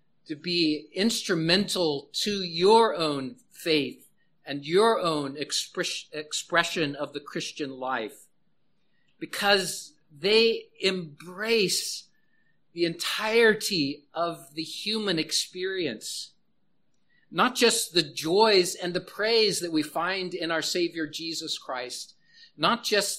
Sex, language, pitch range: male, English, 165-210 Hz